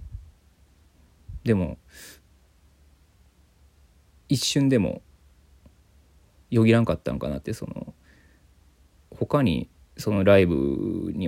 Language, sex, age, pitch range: Japanese, male, 20-39, 75-105 Hz